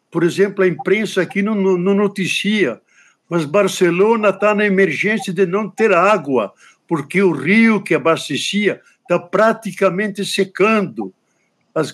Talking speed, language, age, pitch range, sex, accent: 130 wpm, Portuguese, 60-79, 155-195 Hz, male, Brazilian